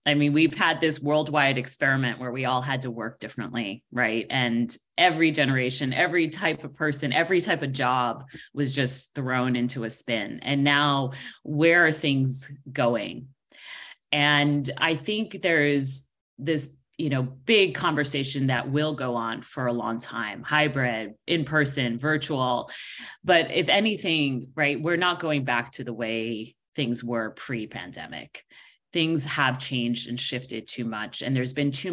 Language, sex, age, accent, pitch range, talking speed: English, female, 30-49, American, 120-155 Hz, 160 wpm